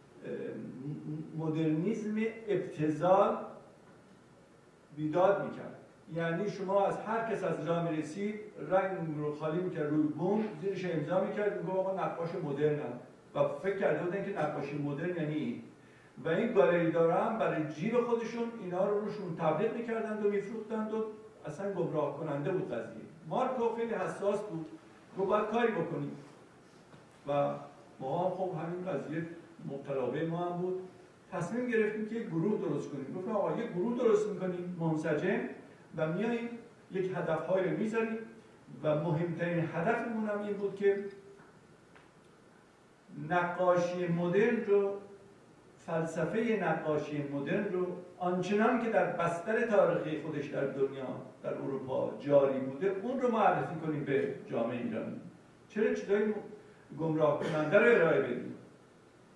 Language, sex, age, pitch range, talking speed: Persian, male, 50-69, 160-205 Hz, 125 wpm